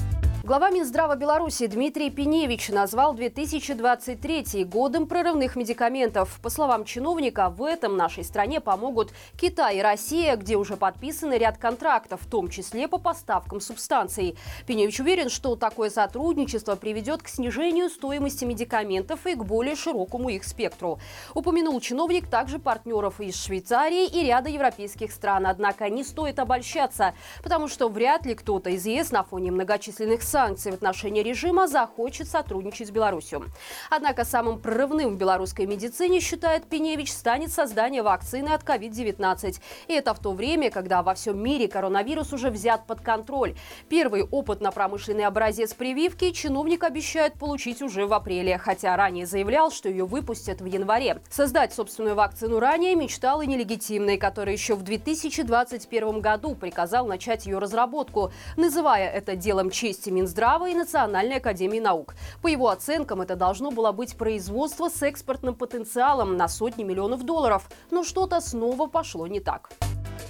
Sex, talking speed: female, 150 wpm